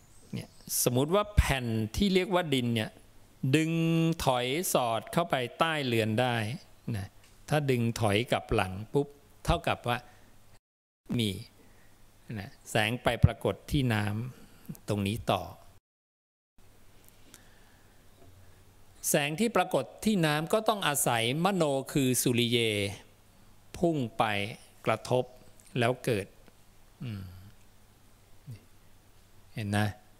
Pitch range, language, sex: 105-150 Hz, English, male